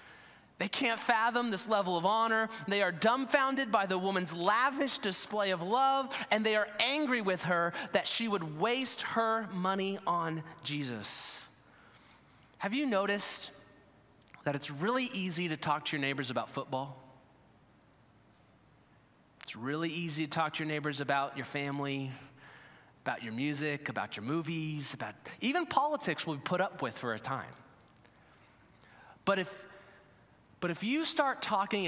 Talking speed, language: 150 wpm, English